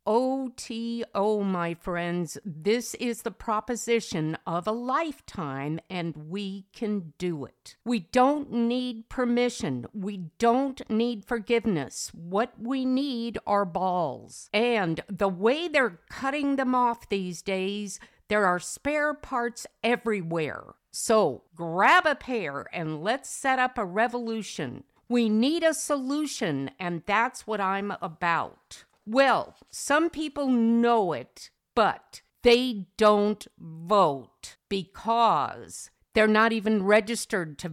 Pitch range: 185-245 Hz